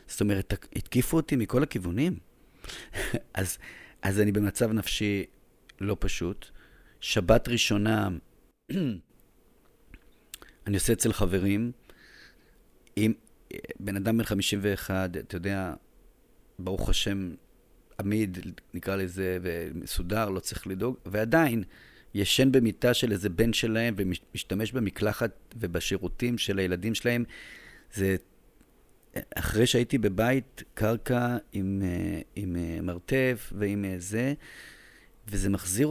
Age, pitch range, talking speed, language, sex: 40-59, 95-115 Hz, 105 wpm, Hebrew, male